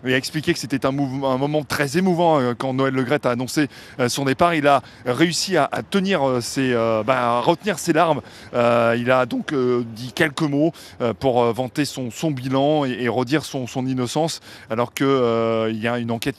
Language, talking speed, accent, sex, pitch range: French, 220 wpm, French, male, 125-155 Hz